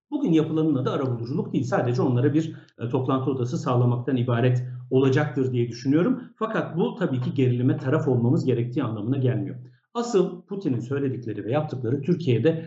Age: 50-69